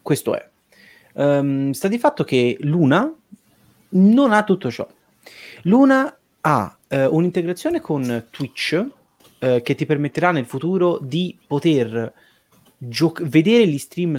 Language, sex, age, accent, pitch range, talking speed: Italian, male, 30-49, native, 125-170 Hz, 110 wpm